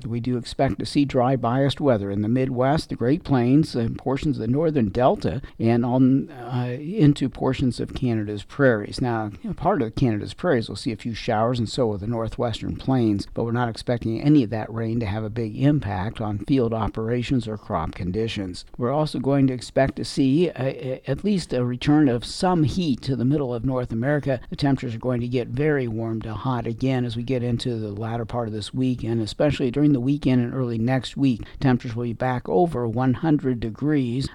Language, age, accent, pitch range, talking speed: English, 50-69, American, 115-140 Hz, 220 wpm